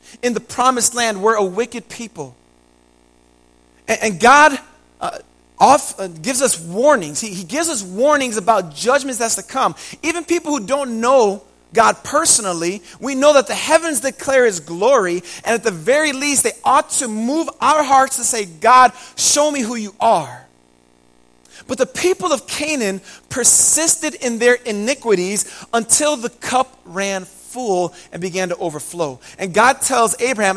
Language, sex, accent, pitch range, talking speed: English, male, American, 180-265 Hz, 160 wpm